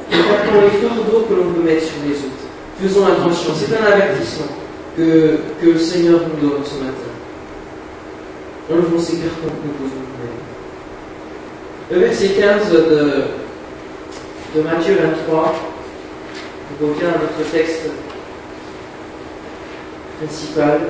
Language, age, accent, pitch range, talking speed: French, 40-59, French, 155-215 Hz, 130 wpm